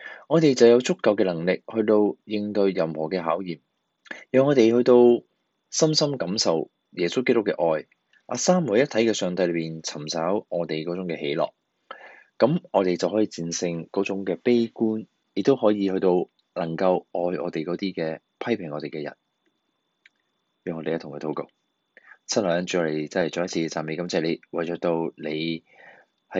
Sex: male